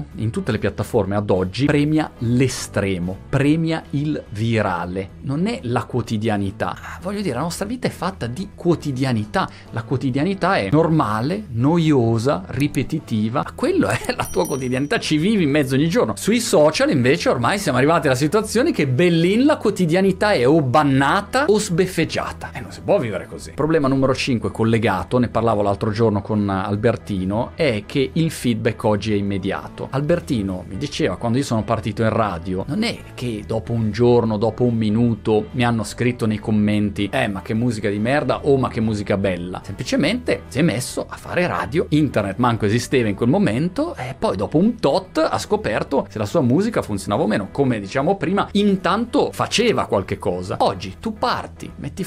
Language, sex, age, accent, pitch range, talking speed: Italian, male, 30-49, native, 105-155 Hz, 175 wpm